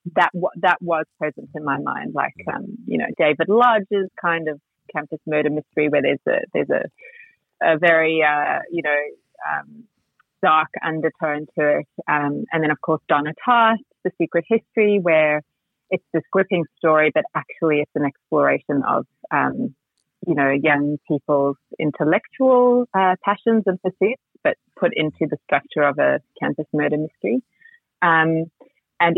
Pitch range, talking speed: 150-190 Hz, 160 wpm